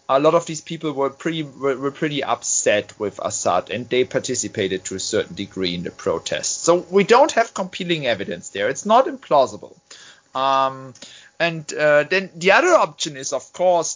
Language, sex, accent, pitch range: German, male, German, 120-165 Hz